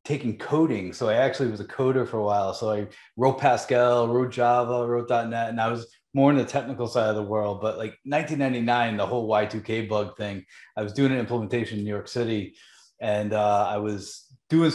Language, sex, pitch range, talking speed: English, male, 110-130 Hz, 210 wpm